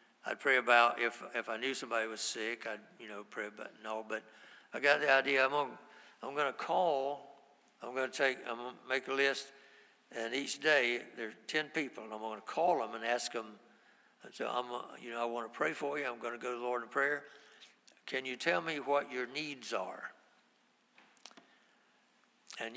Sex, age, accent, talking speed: male, 60-79, American, 210 wpm